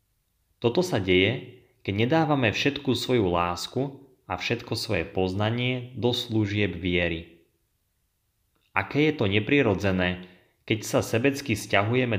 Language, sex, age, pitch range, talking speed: Slovak, male, 30-49, 95-120 Hz, 115 wpm